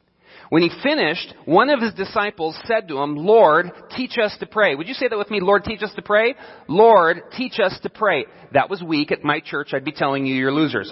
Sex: male